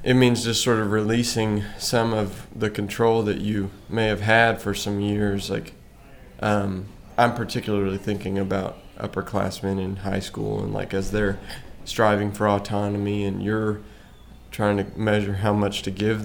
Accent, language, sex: American, English, male